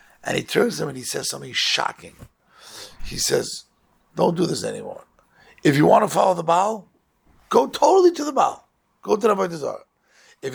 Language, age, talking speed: English, 60-79, 190 wpm